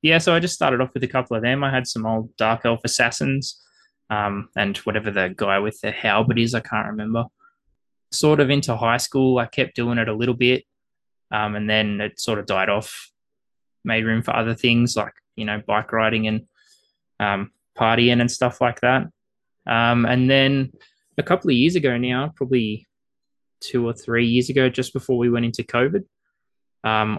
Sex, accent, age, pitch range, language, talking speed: male, Australian, 20-39, 110-125 Hz, English, 195 wpm